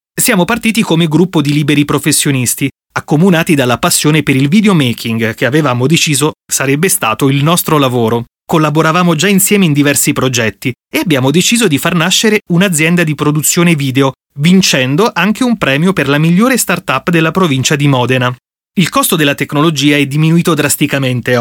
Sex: male